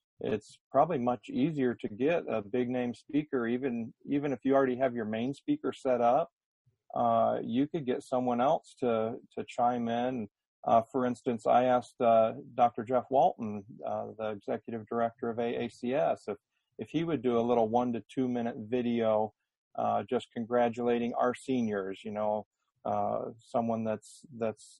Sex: male